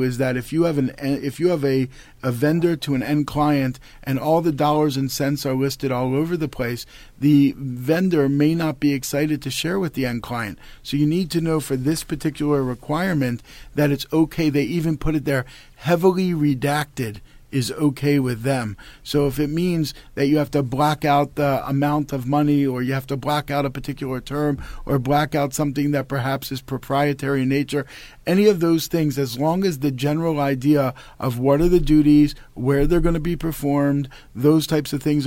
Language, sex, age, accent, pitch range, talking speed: English, male, 40-59, American, 135-150 Hz, 210 wpm